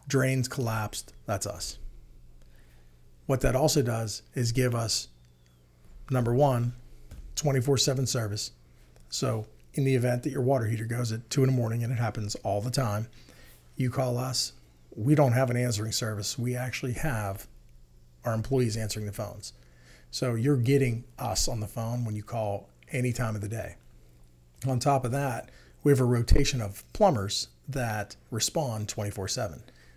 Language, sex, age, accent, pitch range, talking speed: English, male, 40-59, American, 95-130 Hz, 160 wpm